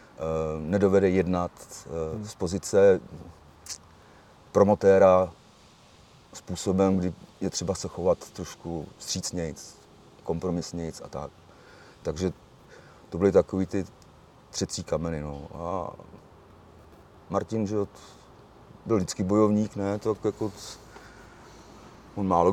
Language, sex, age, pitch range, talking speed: Czech, male, 40-59, 90-110 Hz, 90 wpm